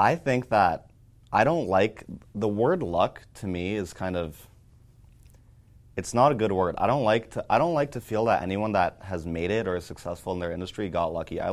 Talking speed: 225 wpm